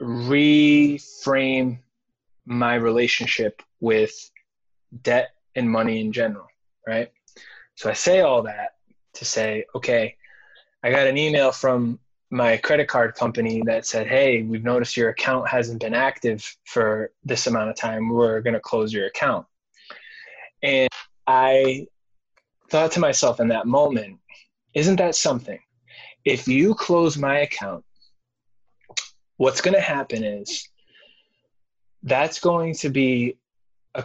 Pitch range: 115-145 Hz